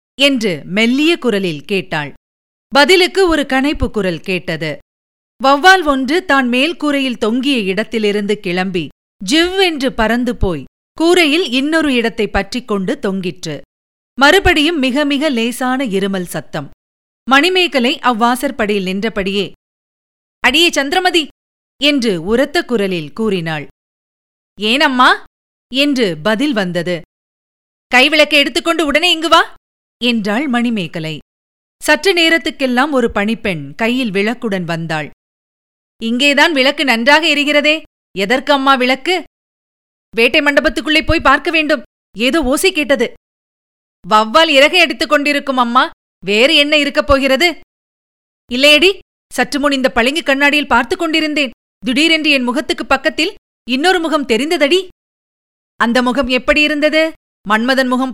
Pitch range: 215-300 Hz